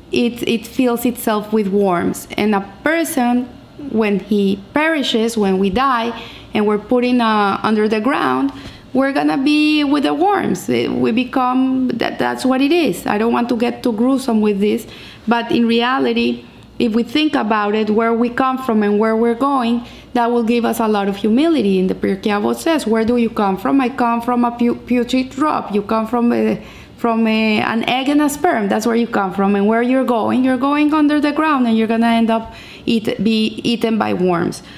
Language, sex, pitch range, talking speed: English, female, 215-255 Hz, 205 wpm